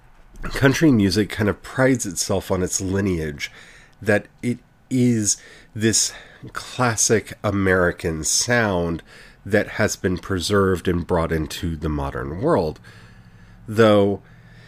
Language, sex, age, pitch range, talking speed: English, male, 40-59, 90-120 Hz, 110 wpm